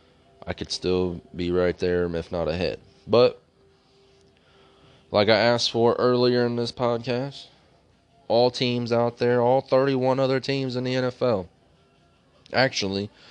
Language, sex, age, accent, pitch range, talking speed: English, male, 20-39, American, 95-130 Hz, 135 wpm